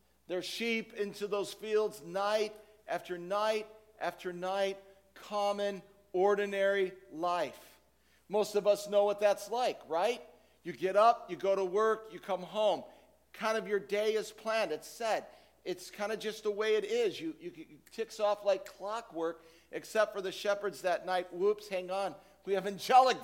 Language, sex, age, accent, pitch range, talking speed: English, male, 50-69, American, 155-205 Hz, 170 wpm